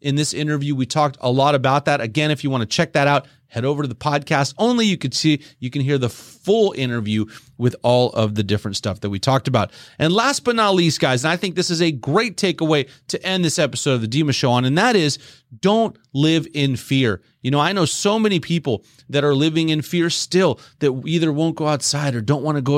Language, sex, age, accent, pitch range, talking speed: English, male, 30-49, American, 130-160 Hz, 250 wpm